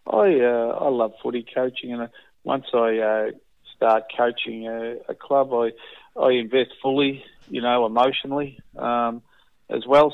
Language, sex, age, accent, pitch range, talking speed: English, male, 40-59, Australian, 115-135 Hz, 155 wpm